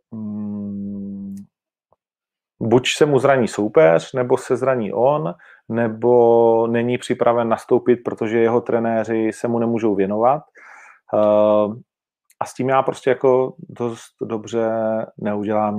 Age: 40-59